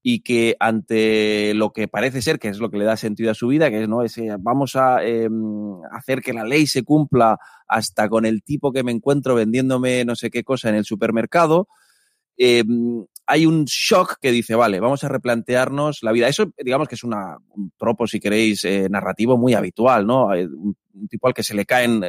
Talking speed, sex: 215 wpm, male